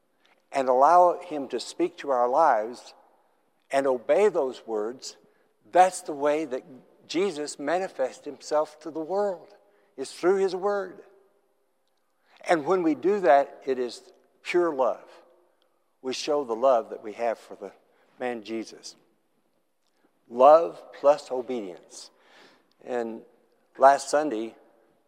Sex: male